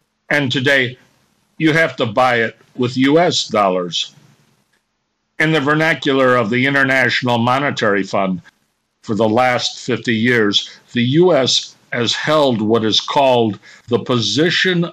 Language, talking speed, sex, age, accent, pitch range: English, 130 wpm, male, 60-79, American, 115-140 Hz